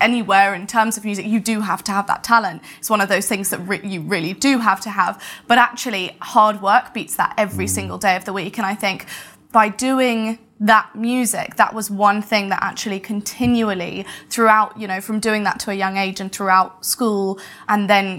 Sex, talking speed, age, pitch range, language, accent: female, 215 wpm, 20-39, 195-240 Hz, English, British